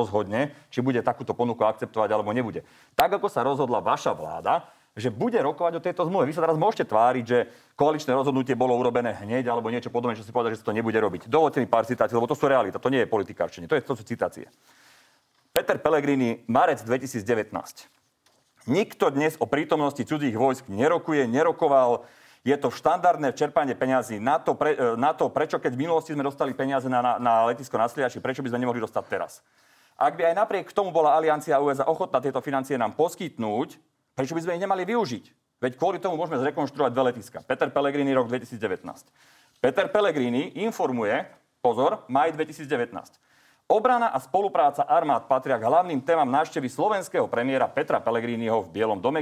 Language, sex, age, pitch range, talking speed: Slovak, male, 40-59, 120-160 Hz, 185 wpm